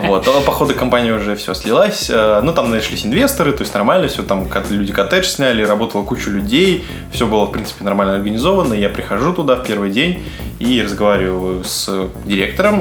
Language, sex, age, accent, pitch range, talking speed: Russian, male, 20-39, native, 100-135 Hz, 175 wpm